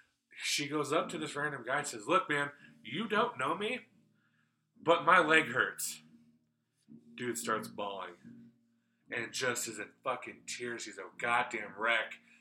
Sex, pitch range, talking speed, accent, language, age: male, 120-160 Hz, 155 wpm, American, English, 30-49